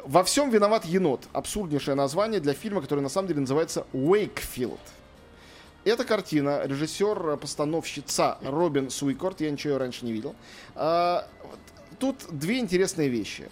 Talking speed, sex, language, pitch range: 130 wpm, male, Russian, 130-190 Hz